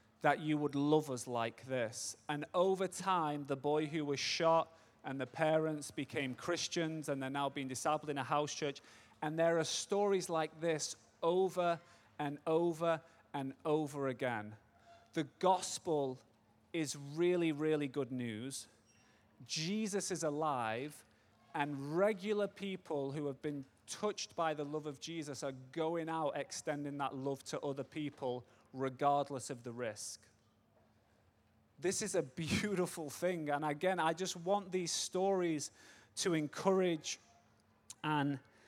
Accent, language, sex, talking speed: British, English, male, 140 wpm